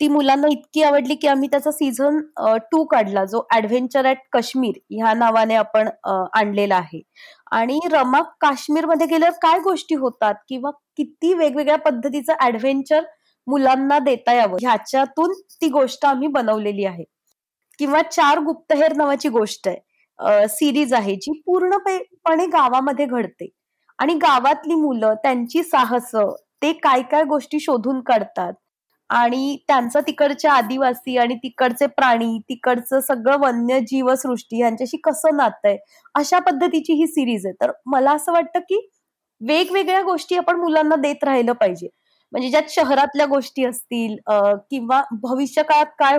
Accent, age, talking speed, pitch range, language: native, 20-39, 135 wpm, 250-310 Hz, Marathi